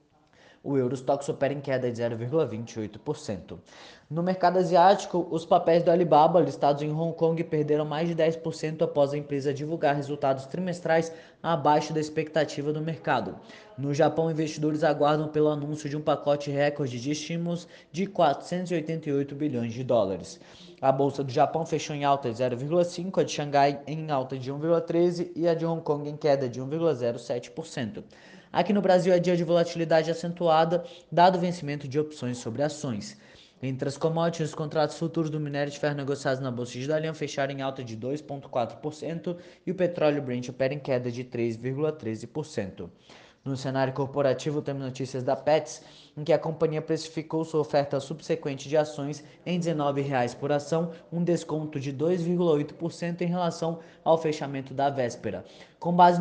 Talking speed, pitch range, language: 165 wpm, 140-165 Hz, Portuguese